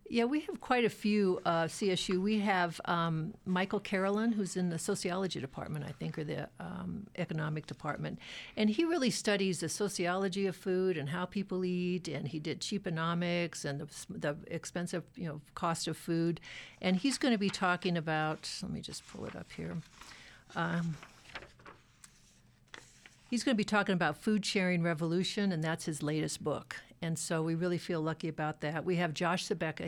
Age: 60-79